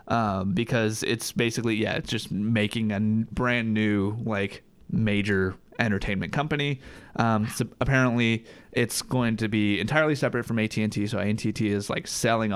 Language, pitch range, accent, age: English, 105-130 Hz, American, 20-39